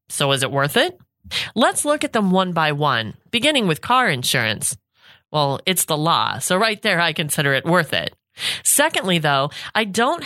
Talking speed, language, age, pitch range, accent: 185 wpm, English, 30-49, 145-210 Hz, American